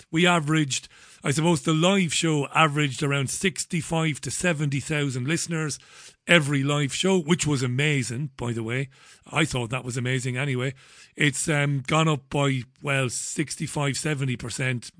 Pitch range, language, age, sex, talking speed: 130-170 Hz, English, 40-59, male, 140 wpm